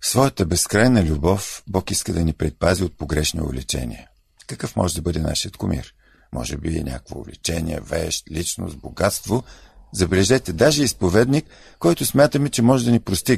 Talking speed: 155 wpm